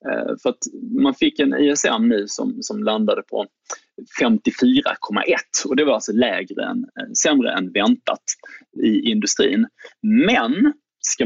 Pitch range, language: 215-295 Hz, Swedish